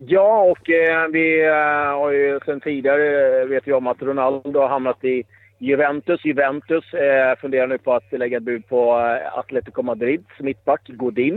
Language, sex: Swedish, male